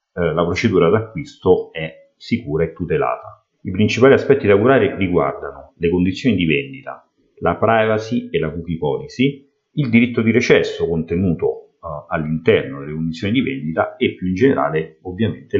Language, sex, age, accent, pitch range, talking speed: Italian, male, 40-59, native, 80-135 Hz, 145 wpm